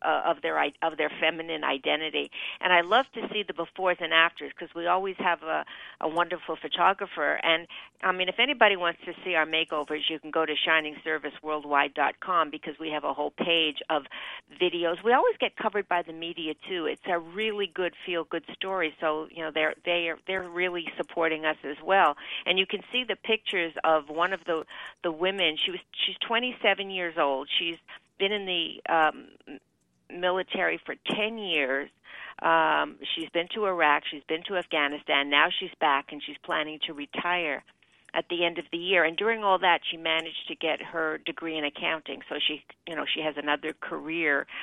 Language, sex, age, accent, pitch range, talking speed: English, female, 50-69, American, 155-185 Hz, 195 wpm